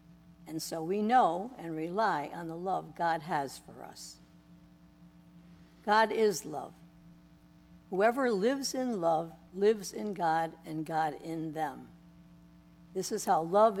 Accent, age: American, 60-79